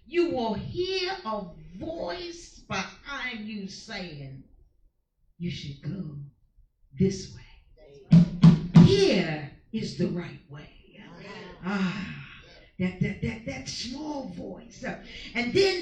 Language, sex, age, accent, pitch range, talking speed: English, female, 40-59, American, 165-240 Hz, 100 wpm